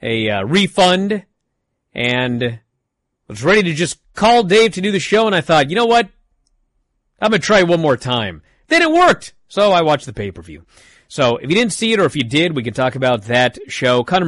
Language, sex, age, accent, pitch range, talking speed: English, male, 30-49, American, 110-170 Hz, 225 wpm